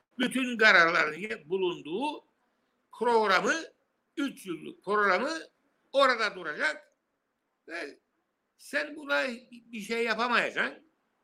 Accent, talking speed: native, 80 wpm